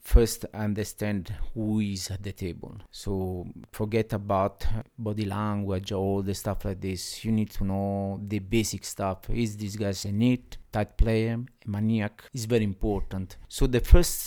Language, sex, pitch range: English, male, 100-120 Hz